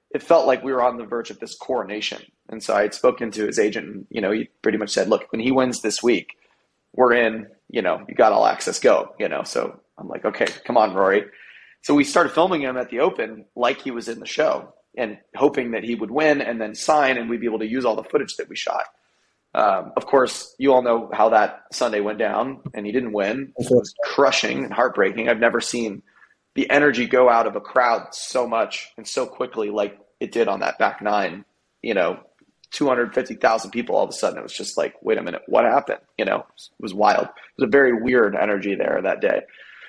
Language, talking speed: English, 240 wpm